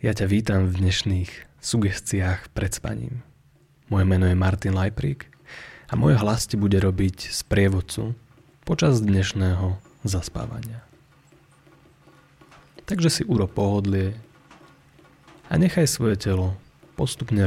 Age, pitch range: 30-49, 100-140 Hz